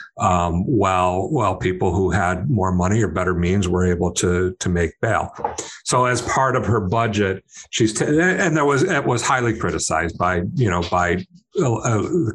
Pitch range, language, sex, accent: 95-125 Hz, English, male, American